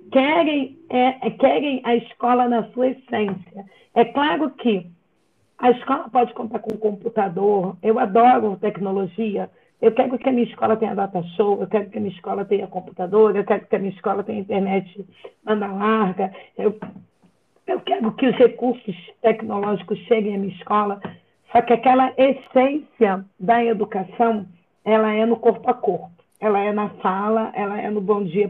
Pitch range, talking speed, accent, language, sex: 205-245 Hz, 170 wpm, Brazilian, Portuguese, female